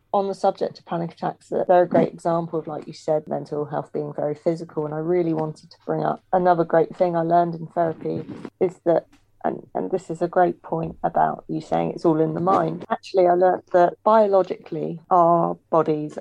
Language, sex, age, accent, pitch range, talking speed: English, female, 30-49, British, 155-185 Hz, 215 wpm